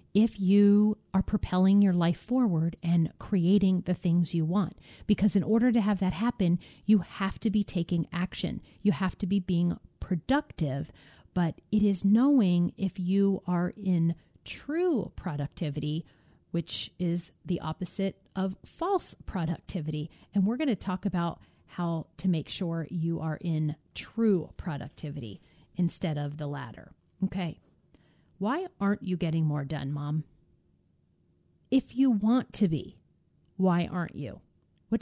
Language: English